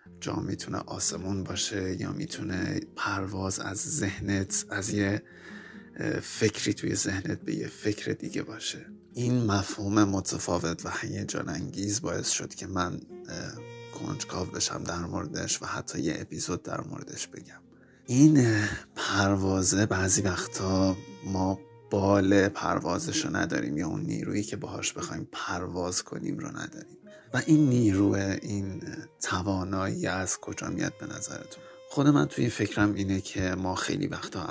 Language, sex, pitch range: Persian, male, 95-115 Hz